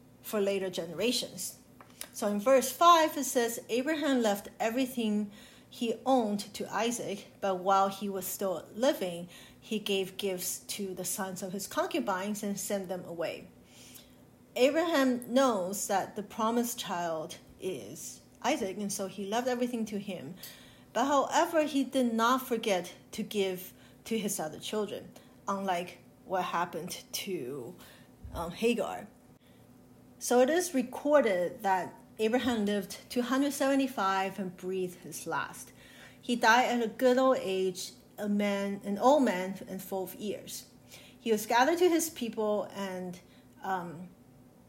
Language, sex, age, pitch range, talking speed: English, female, 40-59, 190-245 Hz, 140 wpm